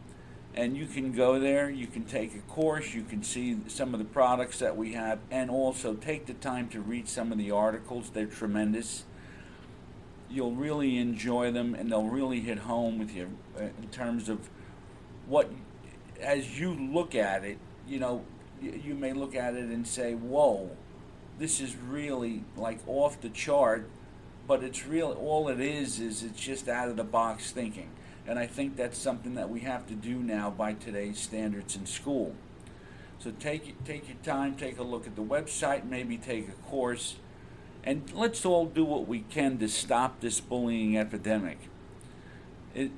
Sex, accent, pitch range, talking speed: male, American, 110-135 Hz, 180 wpm